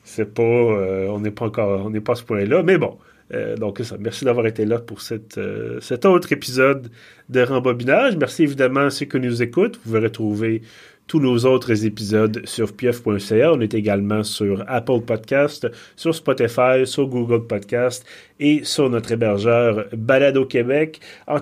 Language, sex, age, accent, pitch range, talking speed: French, male, 30-49, Canadian, 105-130 Hz, 185 wpm